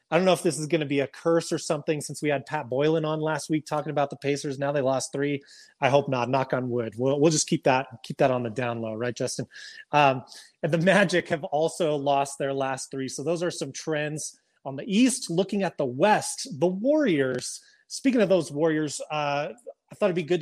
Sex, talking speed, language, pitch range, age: male, 240 wpm, English, 140-175 Hz, 30-49